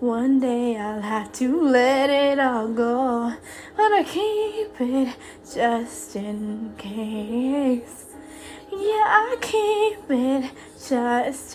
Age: 10-29